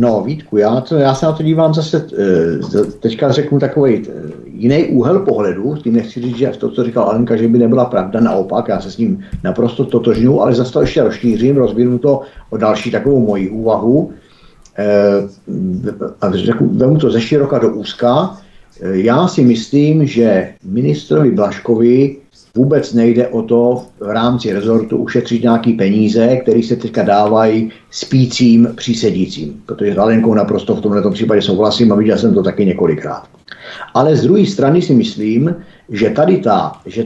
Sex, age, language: male, 50-69, Czech